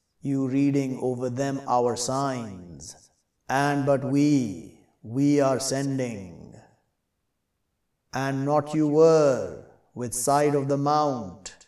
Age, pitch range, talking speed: 50-69, 125-145 Hz, 110 wpm